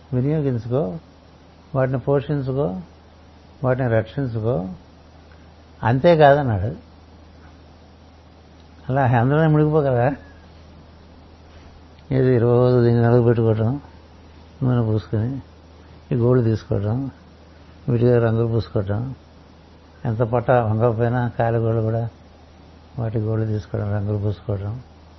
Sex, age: male, 60-79